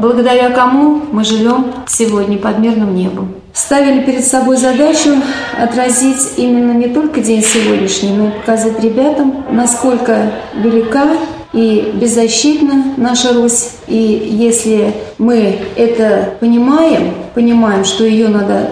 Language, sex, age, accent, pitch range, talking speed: Russian, female, 30-49, native, 215-250 Hz, 120 wpm